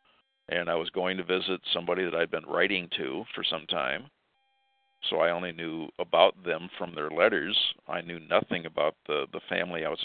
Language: English